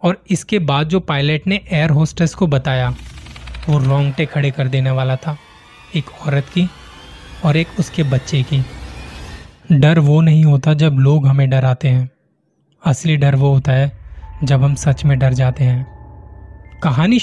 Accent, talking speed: native, 165 wpm